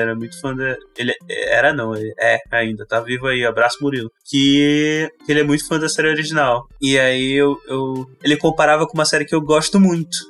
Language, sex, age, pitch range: Portuguese, male, 10-29, 130-170 Hz